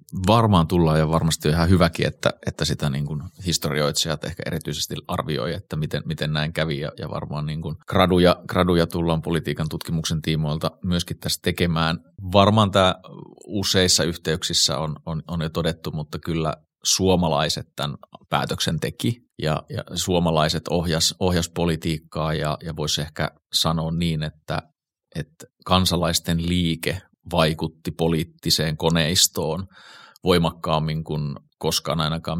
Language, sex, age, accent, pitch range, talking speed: Finnish, male, 30-49, native, 80-90 Hz, 130 wpm